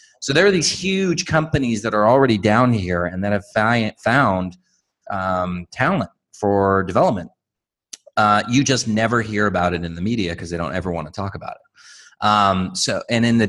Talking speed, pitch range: 190 wpm, 100-120 Hz